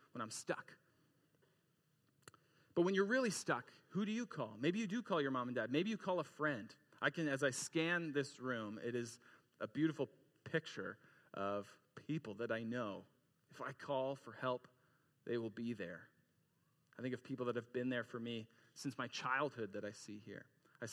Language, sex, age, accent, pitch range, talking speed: English, male, 40-59, American, 130-155 Hz, 200 wpm